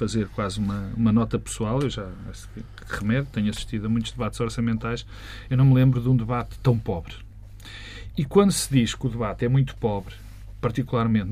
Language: Portuguese